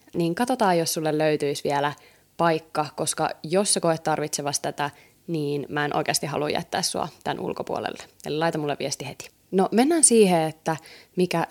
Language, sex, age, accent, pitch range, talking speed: Finnish, female, 20-39, native, 155-175 Hz, 165 wpm